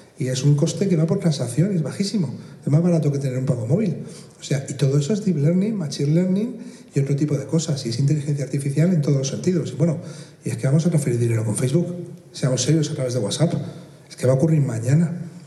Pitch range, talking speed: 140-170 Hz, 245 wpm